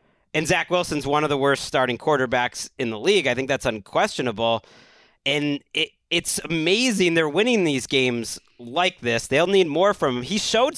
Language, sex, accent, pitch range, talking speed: English, male, American, 140-190 Hz, 185 wpm